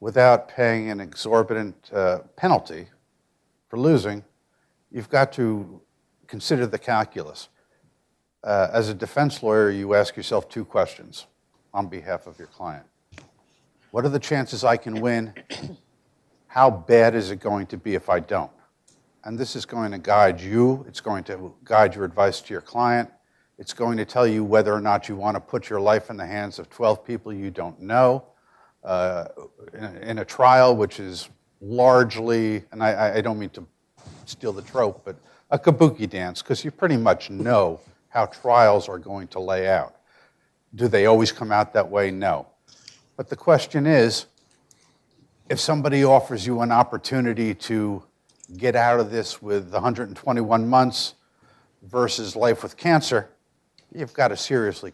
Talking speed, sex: 165 wpm, male